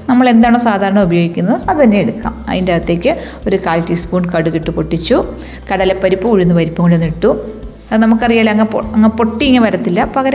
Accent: native